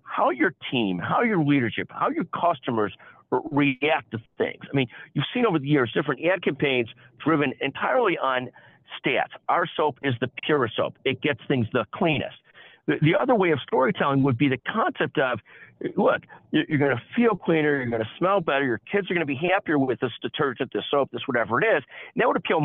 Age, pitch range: 50-69, 135-170 Hz